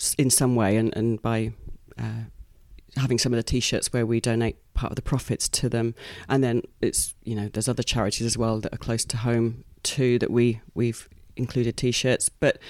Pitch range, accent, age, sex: 120-155 Hz, British, 30-49, female